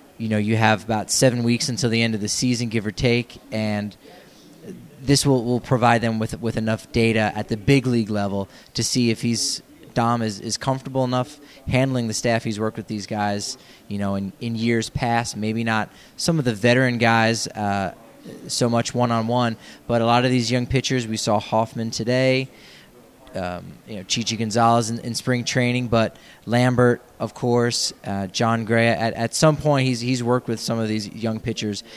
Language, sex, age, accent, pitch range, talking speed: English, male, 20-39, American, 110-125 Hz, 200 wpm